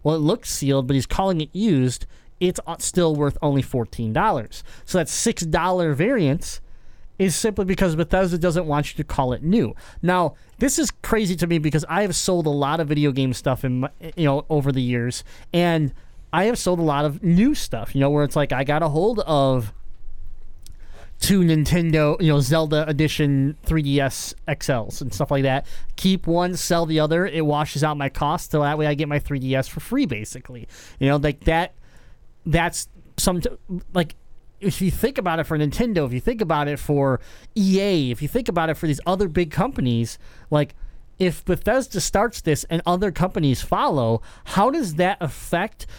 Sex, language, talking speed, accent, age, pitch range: male, English, 190 wpm, American, 30-49, 140-180 Hz